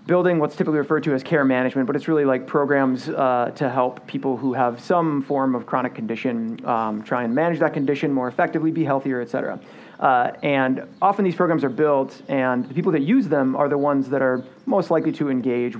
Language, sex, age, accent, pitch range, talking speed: English, male, 30-49, American, 130-160 Hz, 220 wpm